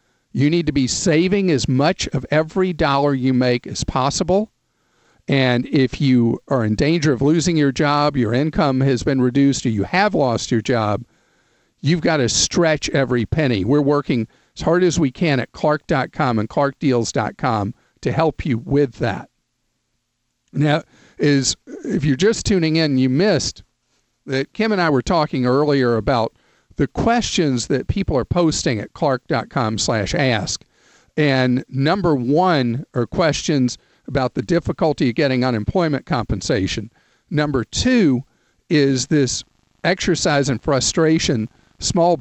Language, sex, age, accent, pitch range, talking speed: English, male, 50-69, American, 125-160 Hz, 145 wpm